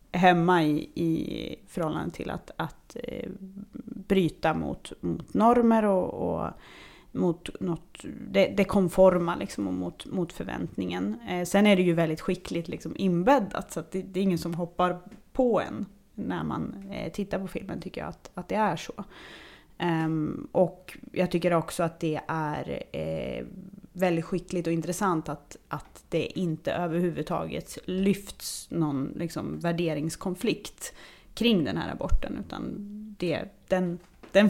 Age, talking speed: 30-49, 130 wpm